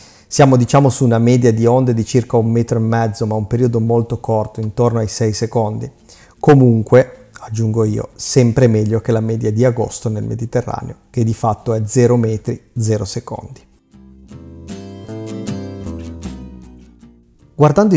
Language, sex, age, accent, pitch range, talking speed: Italian, male, 30-49, native, 110-130 Hz, 145 wpm